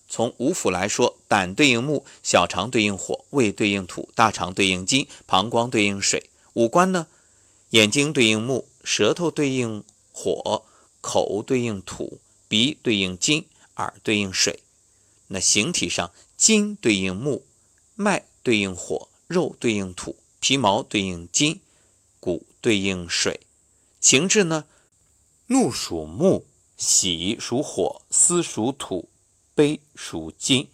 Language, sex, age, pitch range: Chinese, male, 50-69, 95-150 Hz